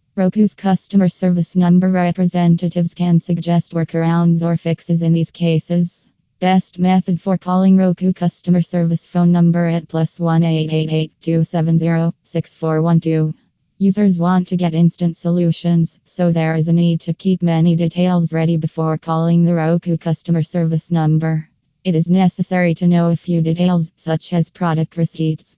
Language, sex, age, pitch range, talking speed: English, female, 20-39, 160-175 Hz, 140 wpm